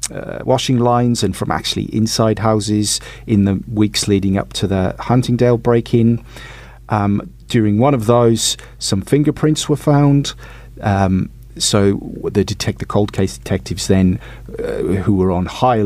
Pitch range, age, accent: 95-120 Hz, 40-59, British